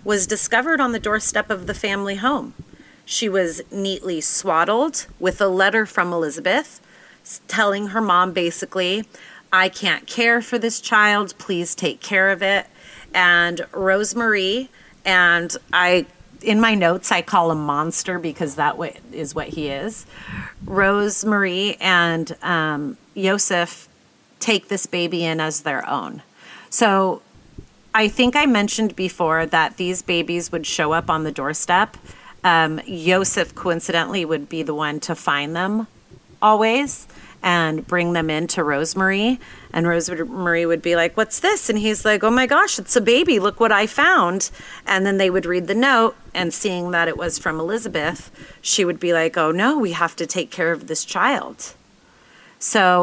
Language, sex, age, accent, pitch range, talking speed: English, female, 30-49, American, 170-215 Hz, 160 wpm